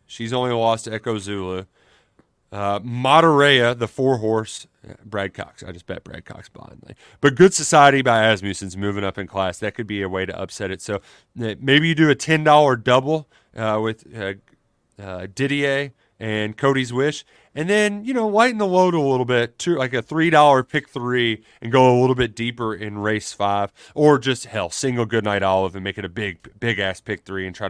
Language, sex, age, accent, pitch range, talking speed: English, male, 30-49, American, 105-140 Hz, 195 wpm